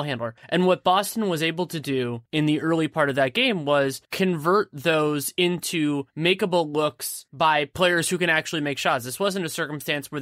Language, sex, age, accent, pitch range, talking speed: English, male, 20-39, American, 150-185 Hz, 195 wpm